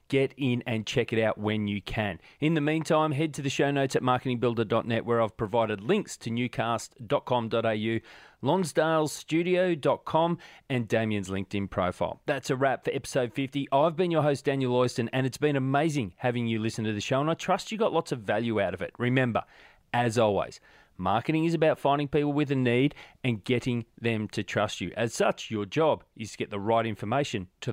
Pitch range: 115-150 Hz